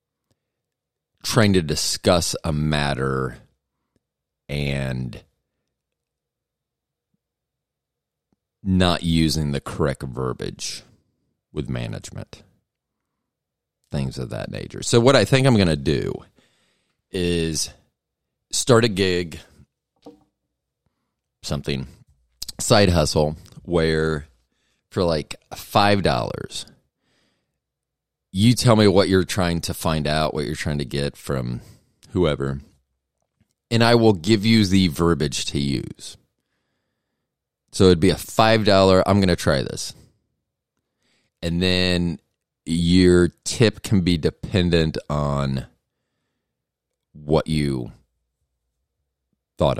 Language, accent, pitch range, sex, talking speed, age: English, American, 70-95 Hz, male, 100 wpm, 40-59